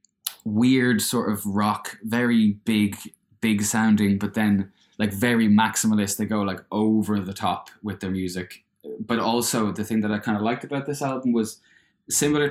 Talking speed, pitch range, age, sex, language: 175 wpm, 100-115 Hz, 20-39, male, English